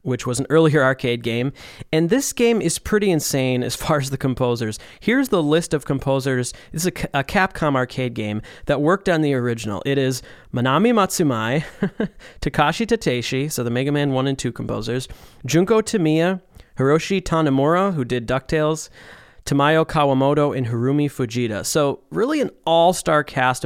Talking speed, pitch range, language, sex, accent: 160 wpm, 125-160 Hz, English, male, American